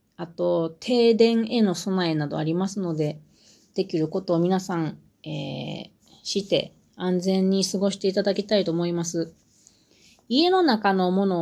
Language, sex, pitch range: Japanese, female, 170-230 Hz